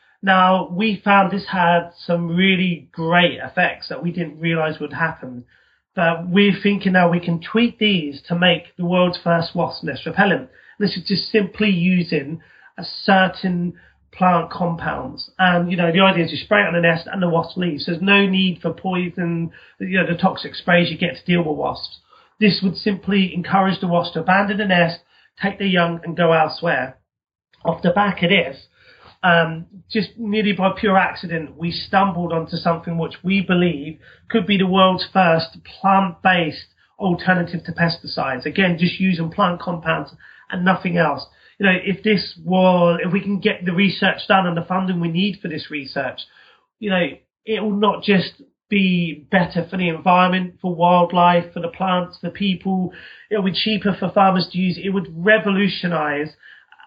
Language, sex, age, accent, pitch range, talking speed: English, male, 30-49, British, 170-195 Hz, 180 wpm